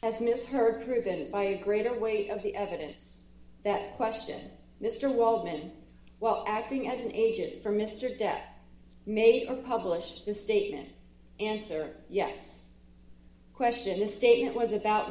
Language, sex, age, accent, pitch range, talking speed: English, female, 40-59, American, 175-235 Hz, 140 wpm